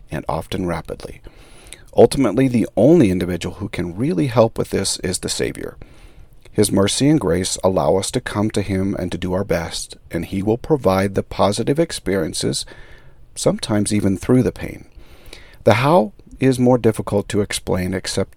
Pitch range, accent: 95-120 Hz, American